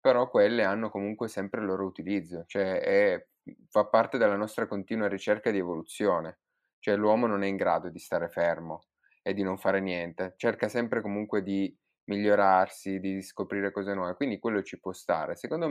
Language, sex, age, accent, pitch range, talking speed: Italian, male, 20-39, native, 95-105 Hz, 180 wpm